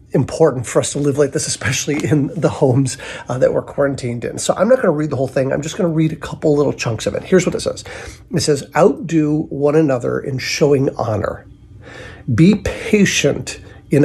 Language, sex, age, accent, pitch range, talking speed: English, male, 50-69, American, 130-165 Hz, 220 wpm